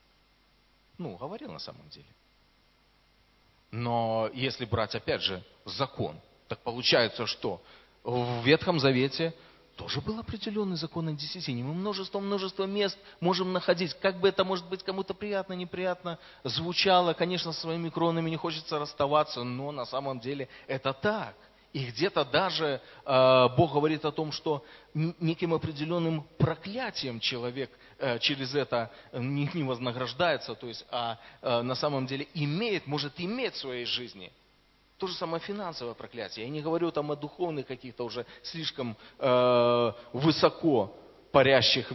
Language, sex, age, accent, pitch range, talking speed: Russian, male, 30-49, native, 125-170 Hz, 140 wpm